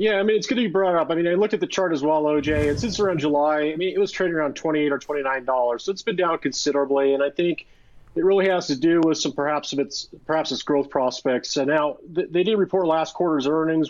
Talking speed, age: 270 wpm, 40-59